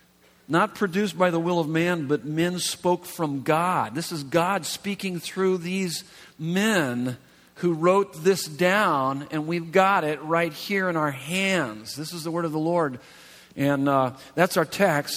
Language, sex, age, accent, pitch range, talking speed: English, male, 50-69, American, 140-175 Hz, 175 wpm